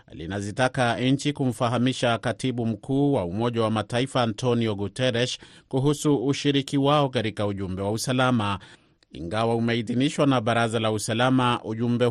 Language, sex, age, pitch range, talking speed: Swahili, male, 30-49, 110-130 Hz, 125 wpm